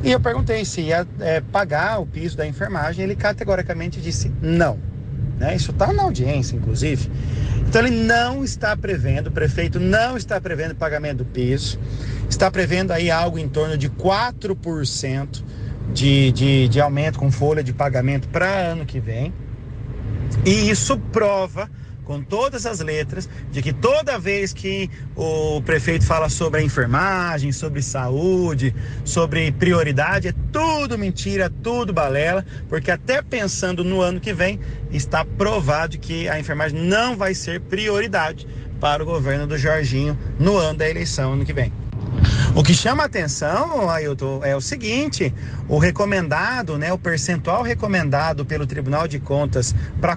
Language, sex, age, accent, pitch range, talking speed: Portuguese, male, 40-59, Brazilian, 125-165 Hz, 150 wpm